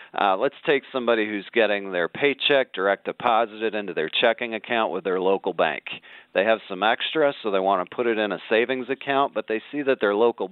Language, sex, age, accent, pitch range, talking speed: English, male, 40-59, American, 100-125 Hz, 215 wpm